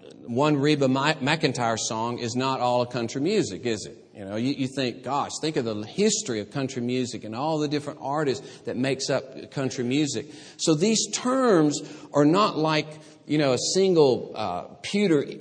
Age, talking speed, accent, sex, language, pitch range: 50-69, 175 wpm, American, male, English, 125-165 Hz